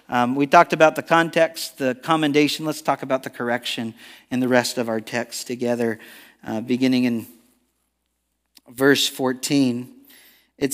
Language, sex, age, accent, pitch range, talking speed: English, male, 50-69, American, 130-200 Hz, 145 wpm